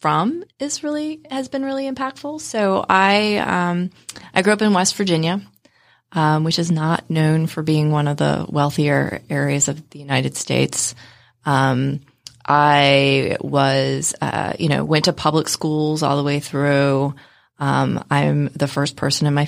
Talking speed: 165 wpm